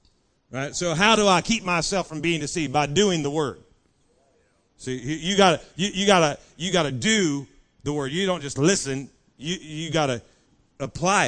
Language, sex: English, male